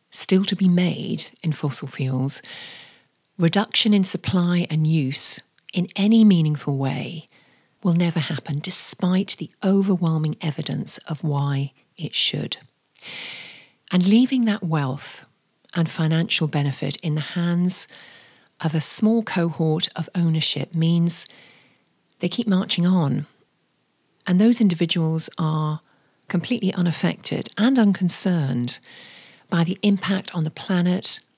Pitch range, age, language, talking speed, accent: 155-195 Hz, 40-59, English, 120 wpm, British